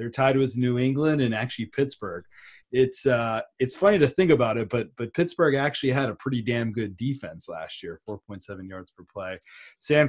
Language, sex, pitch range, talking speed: English, male, 110-135 Hz, 195 wpm